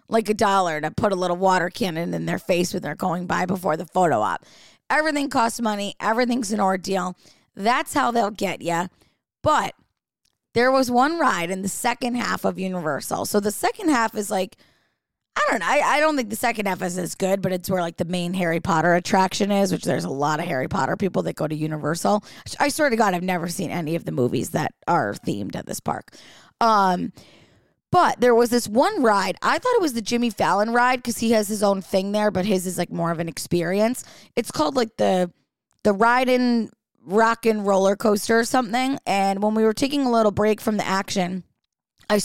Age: 20-39